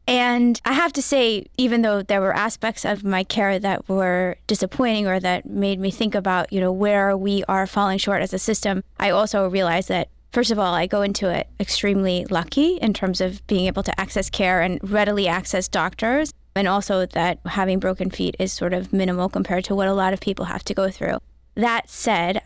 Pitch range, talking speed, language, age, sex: 190-210 Hz, 215 wpm, English, 20-39, female